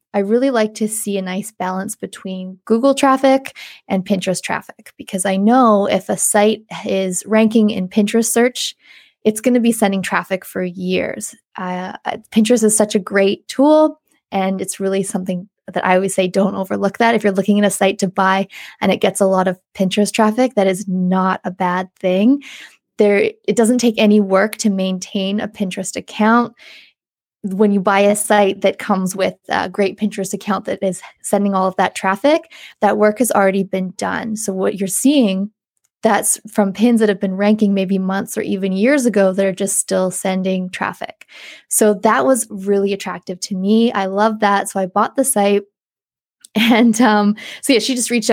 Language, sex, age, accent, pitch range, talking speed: English, female, 20-39, American, 190-220 Hz, 190 wpm